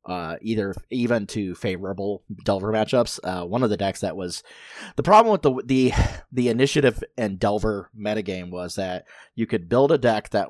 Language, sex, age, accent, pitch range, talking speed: English, male, 30-49, American, 95-120 Hz, 185 wpm